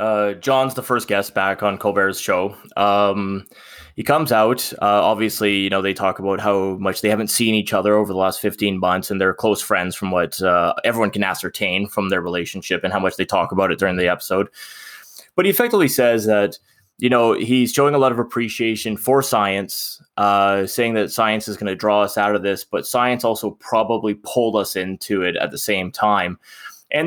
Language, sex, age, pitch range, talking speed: English, male, 20-39, 100-125 Hz, 210 wpm